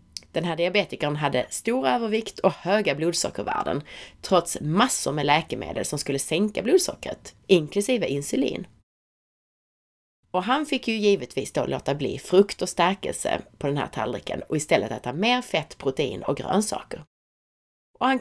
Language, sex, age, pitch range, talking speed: Swedish, female, 30-49, 140-205 Hz, 145 wpm